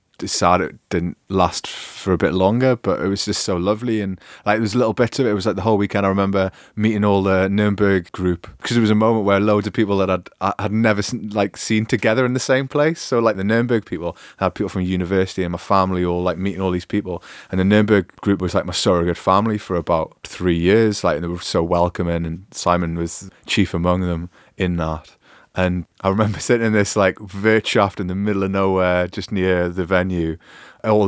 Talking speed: 230 wpm